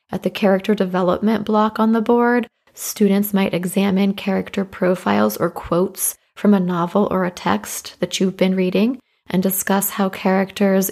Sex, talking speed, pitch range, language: female, 160 wpm, 185-215 Hz, English